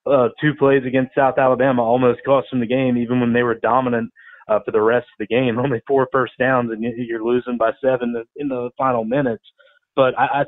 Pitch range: 120-135 Hz